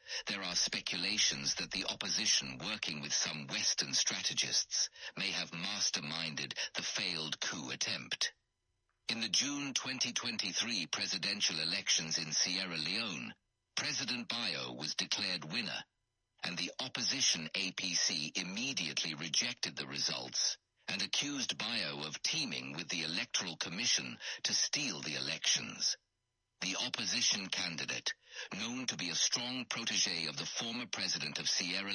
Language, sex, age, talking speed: English, male, 60-79, 130 wpm